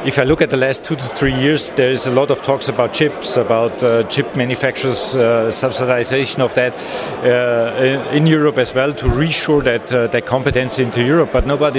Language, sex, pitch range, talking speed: English, male, 125-150 Hz, 210 wpm